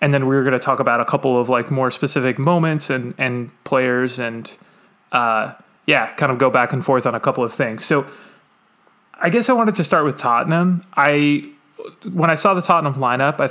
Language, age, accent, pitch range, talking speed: English, 30-49, American, 130-160 Hz, 220 wpm